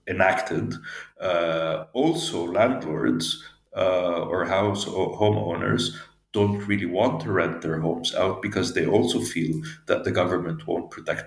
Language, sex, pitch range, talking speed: English, male, 85-105 Hz, 140 wpm